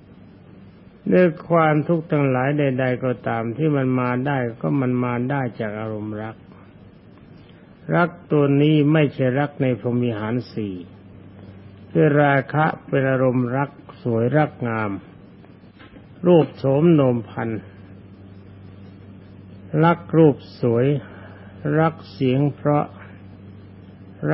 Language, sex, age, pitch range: Thai, male, 60-79, 100-140 Hz